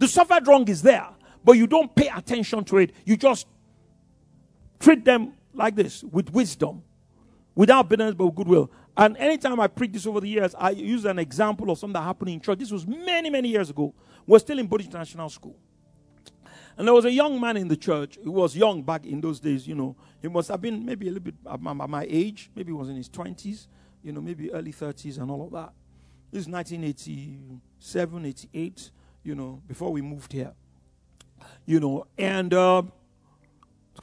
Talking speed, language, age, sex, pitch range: 205 wpm, English, 50-69, male, 135-215 Hz